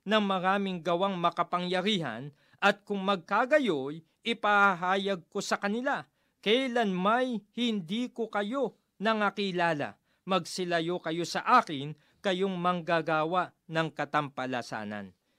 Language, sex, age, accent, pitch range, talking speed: Filipino, male, 40-59, native, 150-210 Hz, 100 wpm